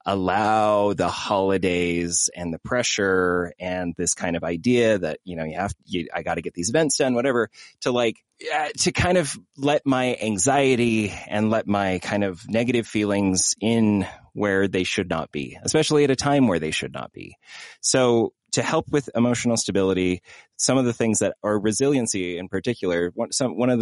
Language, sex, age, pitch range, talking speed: English, male, 30-49, 95-130 Hz, 190 wpm